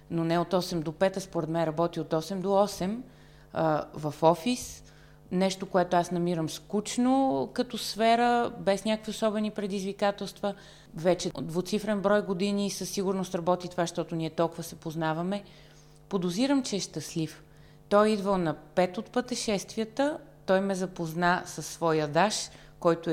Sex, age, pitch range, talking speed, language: female, 30-49, 160-210 Hz, 155 wpm, Bulgarian